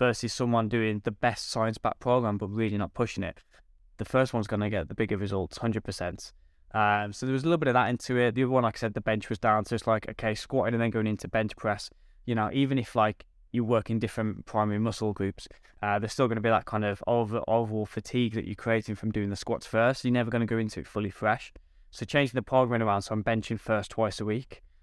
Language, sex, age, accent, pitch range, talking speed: English, male, 10-29, British, 105-120 Hz, 255 wpm